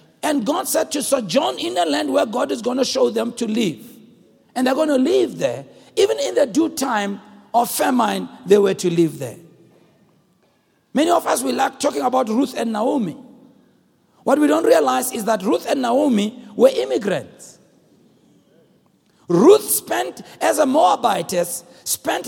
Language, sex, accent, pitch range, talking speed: English, male, South African, 240-330 Hz, 165 wpm